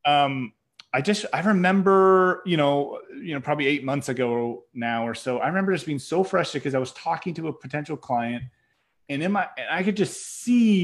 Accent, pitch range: American, 125-170 Hz